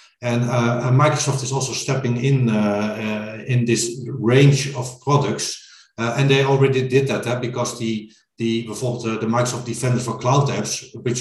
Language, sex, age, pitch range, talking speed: English, male, 50-69, 115-135 Hz, 180 wpm